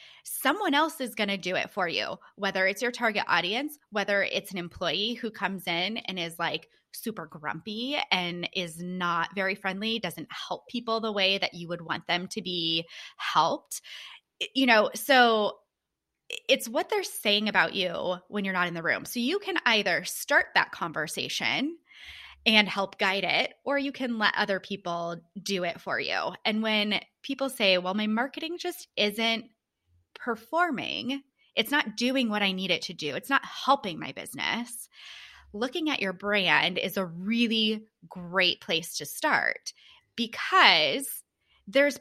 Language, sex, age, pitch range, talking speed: English, female, 20-39, 185-255 Hz, 165 wpm